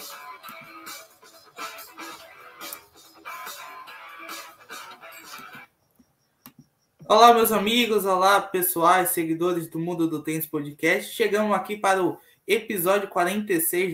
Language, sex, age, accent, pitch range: Portuguese, male, 20-39, Brazilian, 165-215 Hz